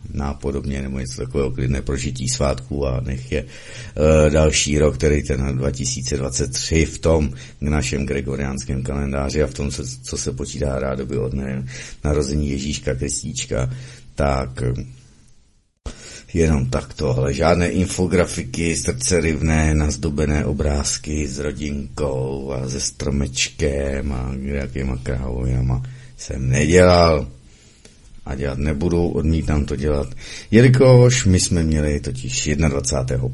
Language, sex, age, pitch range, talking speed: Czech, male, 50-69, 65-85 Hz, 110 wpm